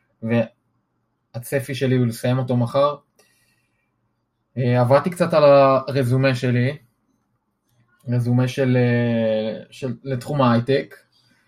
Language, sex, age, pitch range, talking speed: Hebrew, male, 20-39, 115-135 Hz, 80 wpm